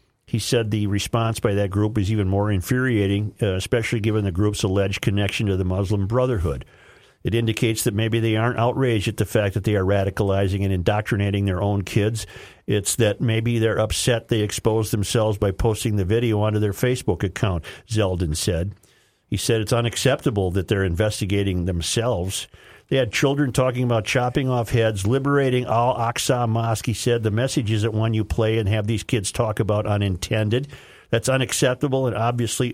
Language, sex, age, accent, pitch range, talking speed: English, male, 50-69, American, 100-125 Hz, 180 wpm